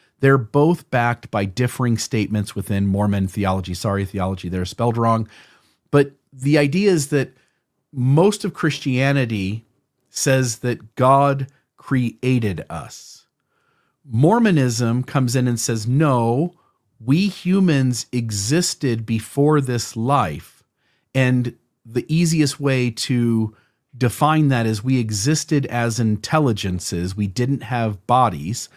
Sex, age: male, 40-59